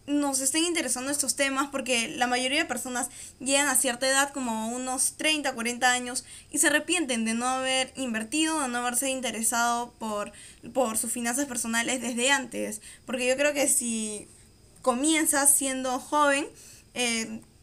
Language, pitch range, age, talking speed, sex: Spanish, 240-290 Hz, 10-29, 155 wpm, female